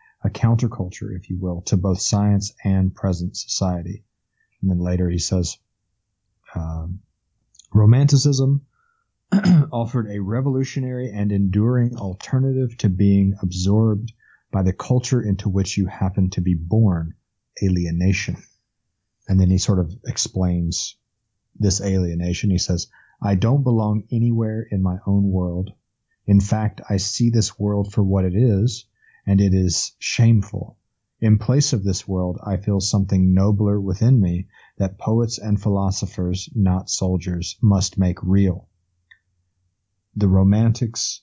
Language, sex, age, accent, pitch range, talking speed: English, male, 40-59, American, 95-110 Hz, 135 wpm